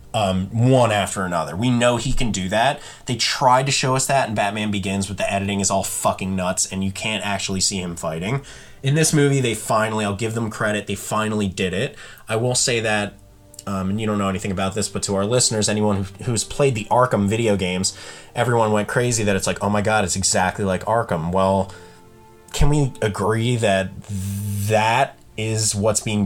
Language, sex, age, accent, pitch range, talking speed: English, male, 20-39, American, 100-115 Hz, 210 wpm